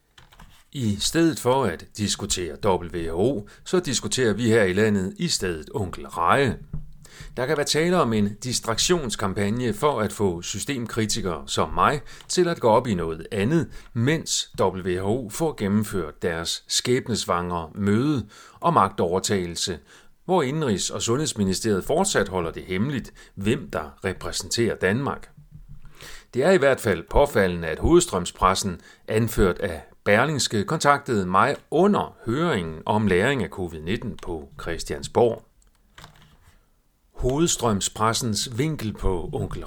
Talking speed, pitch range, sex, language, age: 125 wpm, 100-145 Hz, male, Danish, 40-59